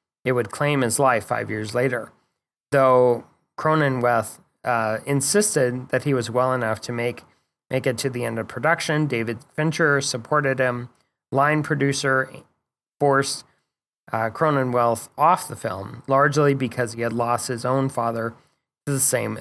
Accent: American